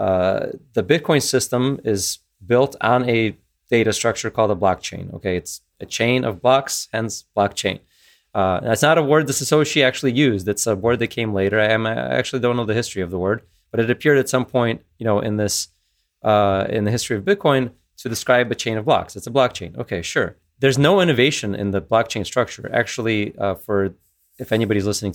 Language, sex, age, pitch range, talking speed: English, male, 20-39, 100-125 Hz, 205 wpm